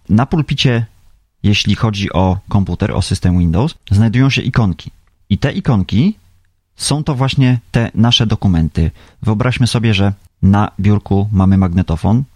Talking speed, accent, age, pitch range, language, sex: 135 wpm, native, 30-49, 90-115 Hz, Polish, male